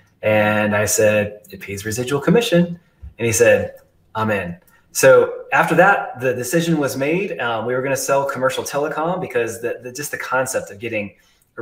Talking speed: 175 wpm